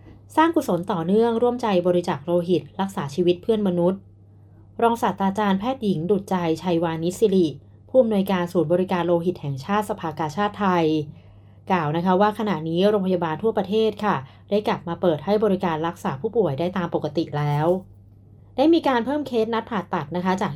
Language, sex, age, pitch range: Thai, female, 20-39, 165-210 Hz